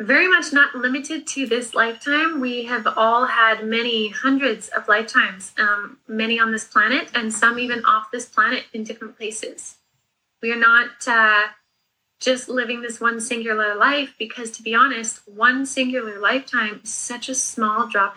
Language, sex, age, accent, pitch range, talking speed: English, female, 20-39, American, 215-260 Hz, 170 wpm